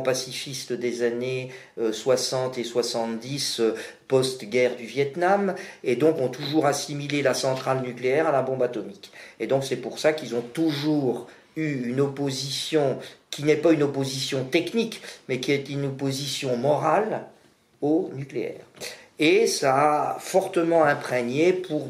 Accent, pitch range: French, 125-150 Hz